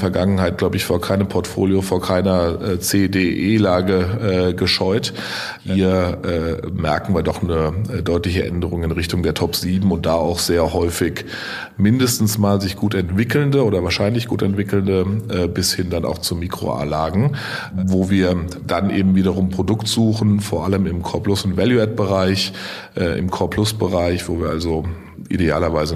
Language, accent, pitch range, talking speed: German, German, 85-100 Hz, 155 wpm